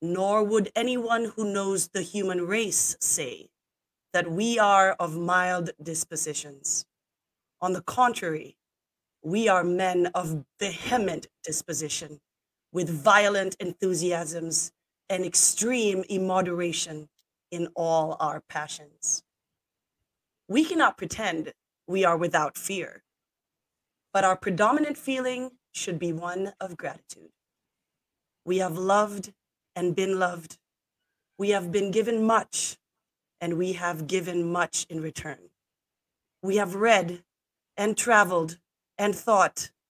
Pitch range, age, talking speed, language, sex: 170-205 Hz, 30-49, 115 wpm, English, female